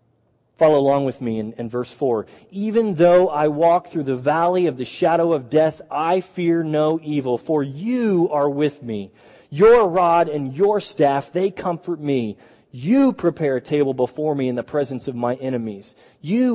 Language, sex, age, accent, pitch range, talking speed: English, male, 30-49, American, 135-185 Hz, 180 wpm